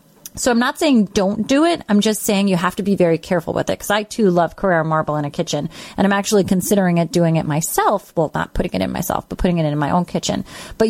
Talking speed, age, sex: 270 wpm, 30-49, female